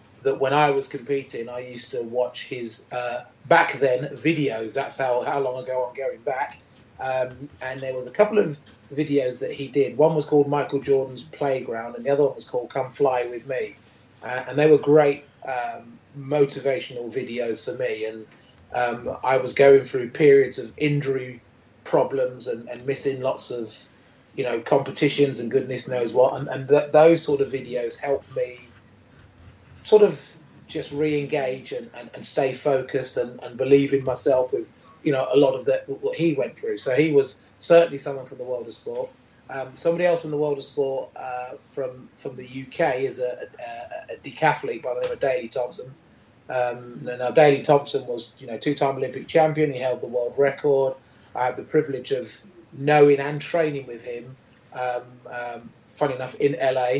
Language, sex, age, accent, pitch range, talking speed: English, male, 30-49, British, 125-150 Hz, 195 wpm